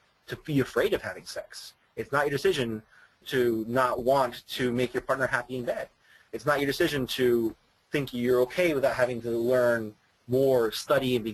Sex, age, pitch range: male, 30-49, 115-140 Hz